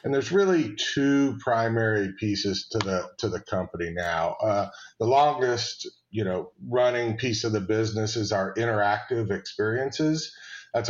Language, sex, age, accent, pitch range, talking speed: English, male, 40-59, American, 105-125 Hz, 150 wpm